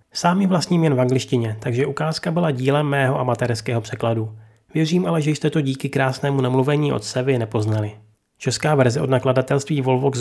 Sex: male